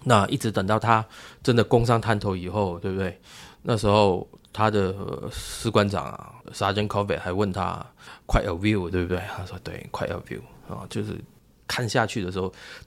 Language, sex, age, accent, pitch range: Chinese, male, 20-39, native, 95-115 Hz